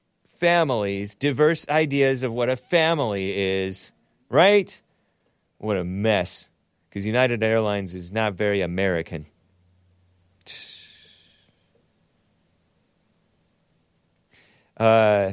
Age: 40-59